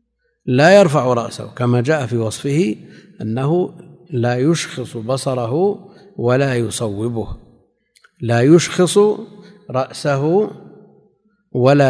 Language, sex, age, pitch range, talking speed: Arabic, male, 50-69, 115-175 Hz, 85 wpm